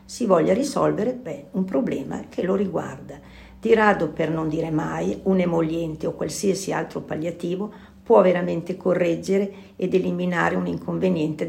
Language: Italian